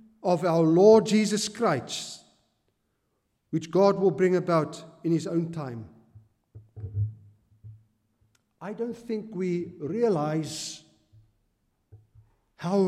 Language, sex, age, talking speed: Italian, male, 50-69, 95 wpm